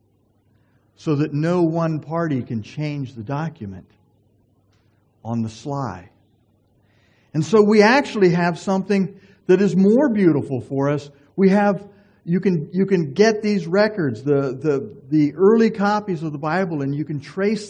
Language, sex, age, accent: English, male, 50-69, American